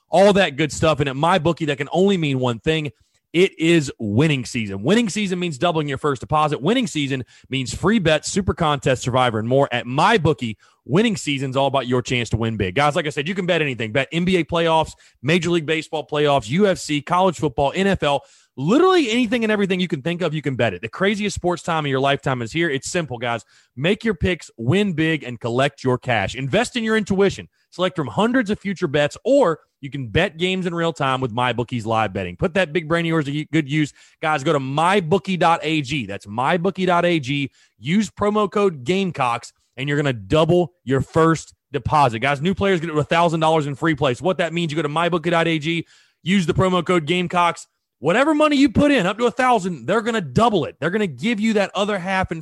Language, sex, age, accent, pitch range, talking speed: English, male, 30-49, American, 140-185 Hz, 220 wpm